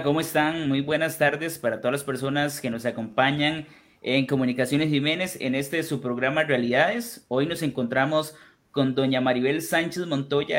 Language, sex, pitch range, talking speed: Spanish, male, 130-160 Hz, 160 wpm